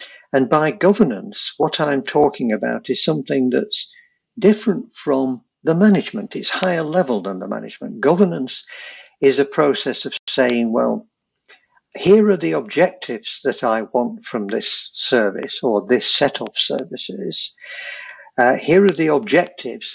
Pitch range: 130-195 Hz